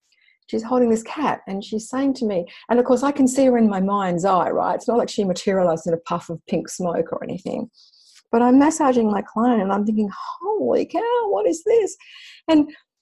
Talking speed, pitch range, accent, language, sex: 220 wpm, 195-300 Hz, Australian, English, female